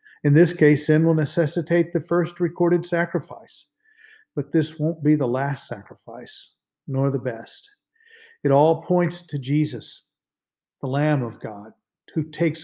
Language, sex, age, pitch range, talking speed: English, male, 50-69, 125-160 Hz, 145 wpm